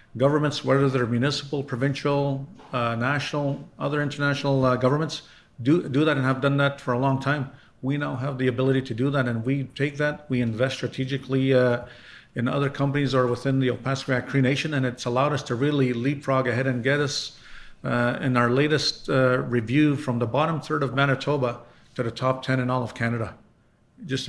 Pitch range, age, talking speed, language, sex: 125-145 Hz, 50-69, 200 wpm, English, male